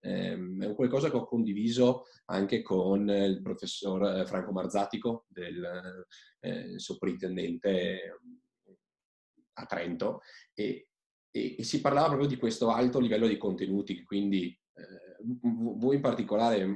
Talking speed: 125 wpm